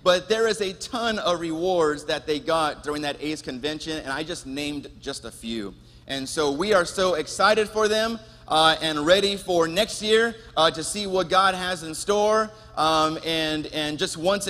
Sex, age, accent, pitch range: male, 30-49, American, 155-205 Hz